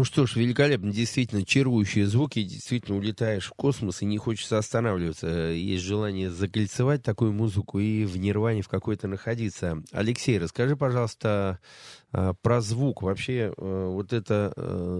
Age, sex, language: 30-49, male, Russian